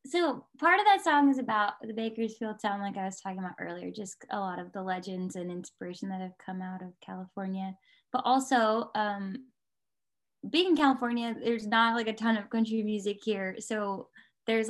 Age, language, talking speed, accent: 10-29, English, 190 wpm, American